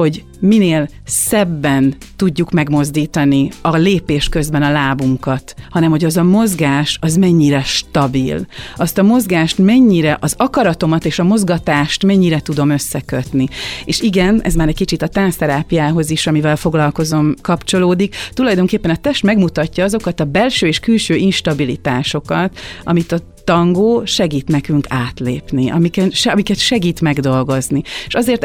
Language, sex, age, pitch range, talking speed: Hungarian, female, 30-49, 140-190 Hz, 135 wpm